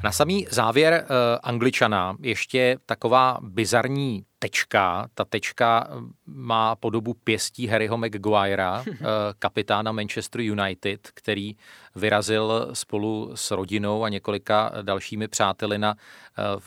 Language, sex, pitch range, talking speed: Czech, male, 100-115 Hz, 100 wpm